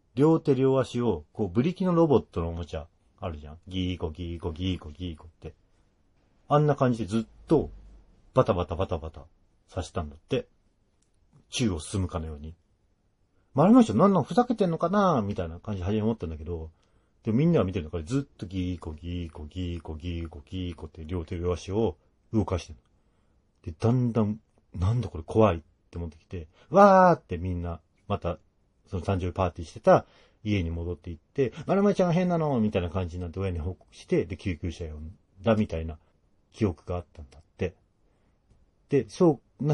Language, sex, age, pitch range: Japanese, male, 40-59, 85-115 Hz